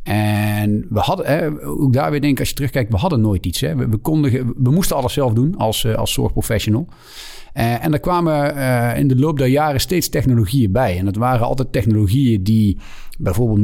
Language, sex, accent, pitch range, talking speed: Dutch, male, Dutch, 110-135 Hz, 200 wpm